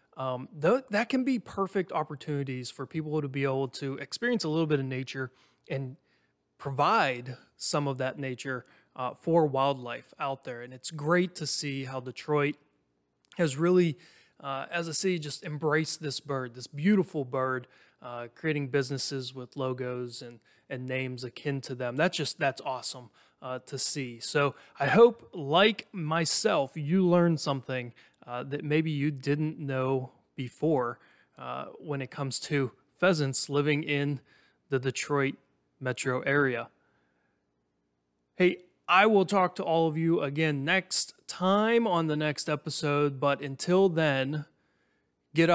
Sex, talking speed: male, 150 wpm